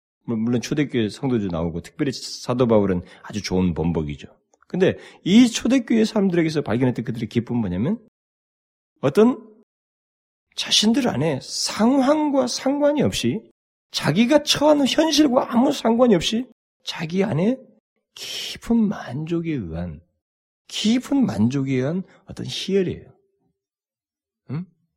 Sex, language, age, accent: male, Korean, 40-59, native